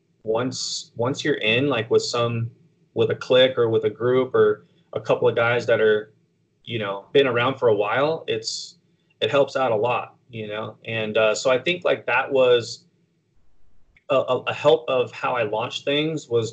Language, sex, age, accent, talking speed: English, male, 20-39, American, 190 wpm